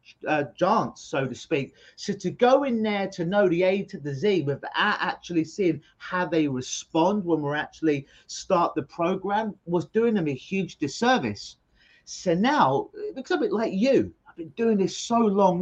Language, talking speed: English, 190 wpm